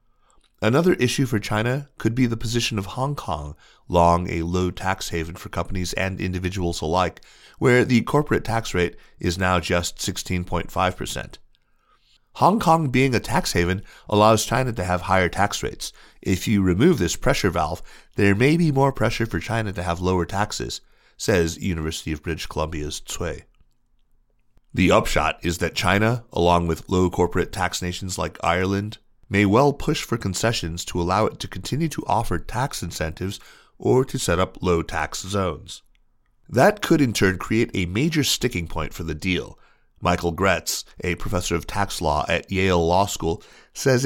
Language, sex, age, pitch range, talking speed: English, male, 30-49, 85-110 Hz, 170 wpm